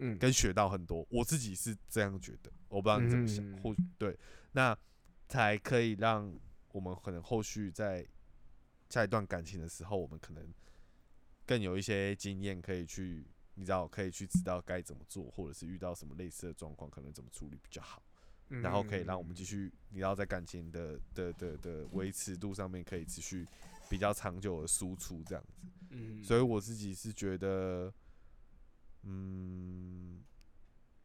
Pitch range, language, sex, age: 85-105 Hz, Chinese, male, 20-39